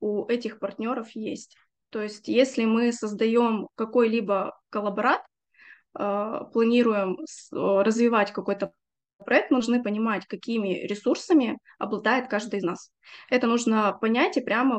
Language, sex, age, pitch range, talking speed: Russian, female, 20-39, 210-260 Hz, 115 wpm